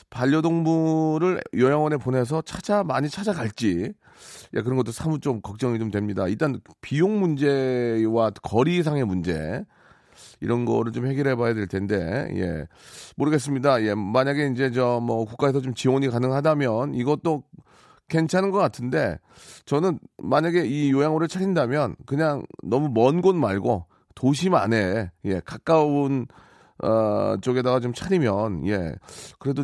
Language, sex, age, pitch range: Korean, male, 40-59, 110-160 Hz